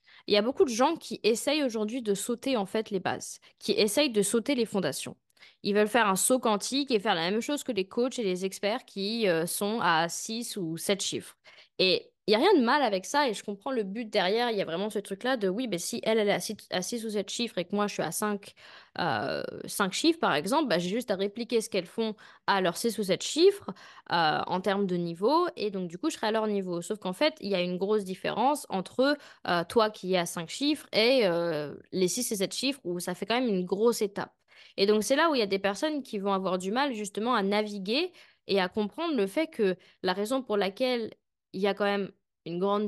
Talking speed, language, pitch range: 255 wpm, French, 195-250 Hz